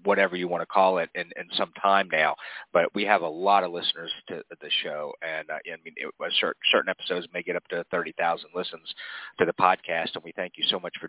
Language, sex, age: English, male, 30-49